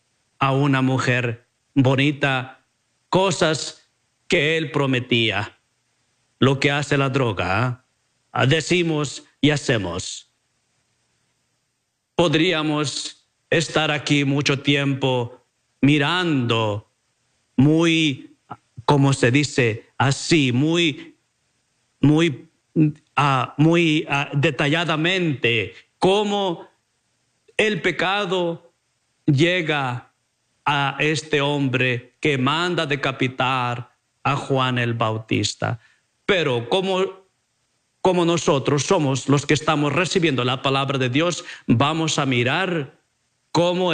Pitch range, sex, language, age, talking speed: 130-160 Hz, male, English, 50-69, 90 wpm